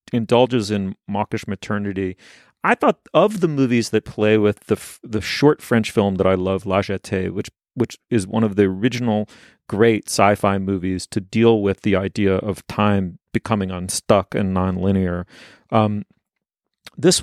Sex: male